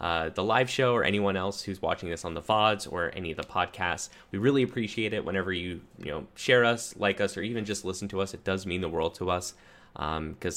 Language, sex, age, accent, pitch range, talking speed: English, male, 10-29, American, 85-105 Hz, 250 wpm